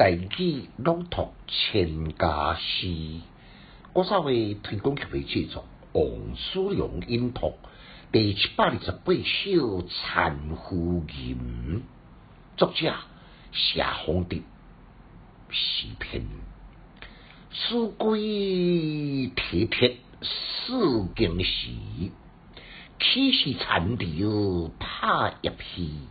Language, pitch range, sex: Chinese, 85-140 Hz, male